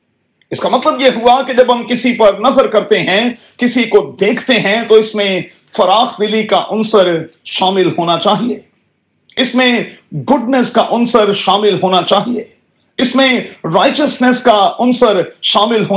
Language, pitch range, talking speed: Urdu, 195-245 Hz, 115 wpm